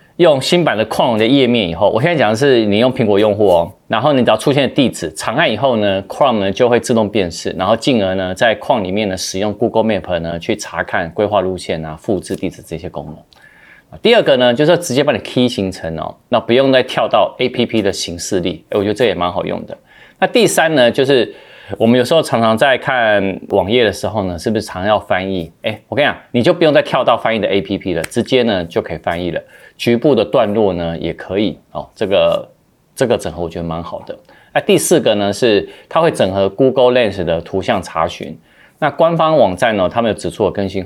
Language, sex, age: Chinese, male, 30-49